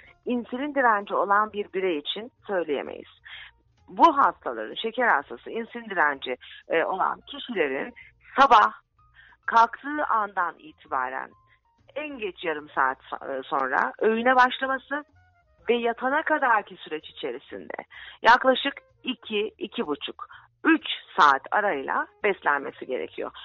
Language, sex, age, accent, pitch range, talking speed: English, female, 40-59, Turkish, 170-255 Hz, 105 wpm